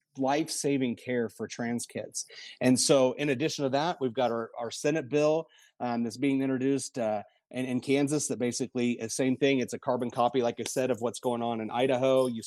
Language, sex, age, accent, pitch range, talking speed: English, male, 30-49, American, 115-135 Hz, 210 wpm